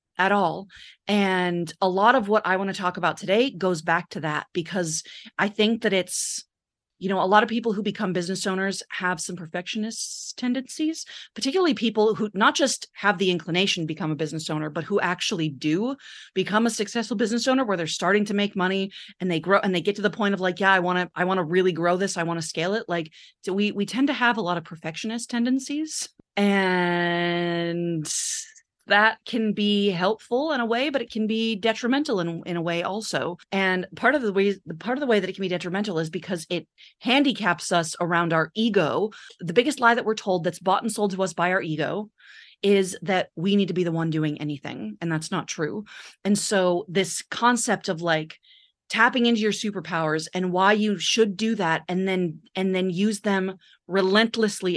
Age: 30-49